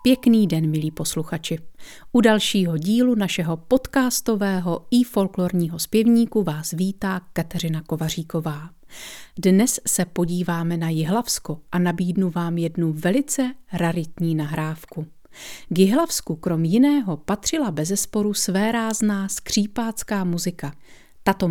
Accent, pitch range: native, 170-220 Hz